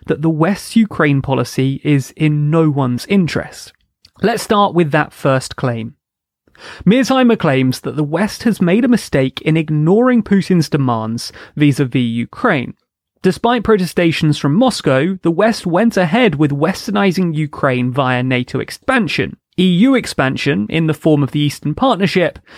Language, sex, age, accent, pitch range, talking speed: English, male, 30-49, British, 145-210 Hz, 145 wpm